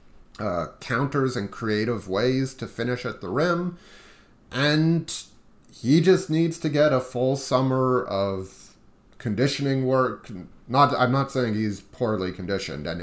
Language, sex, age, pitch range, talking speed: English, male, 30-49, 95-130 Hz, 140 wpm